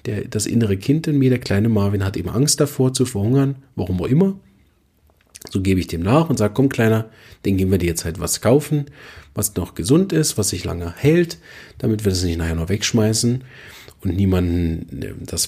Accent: German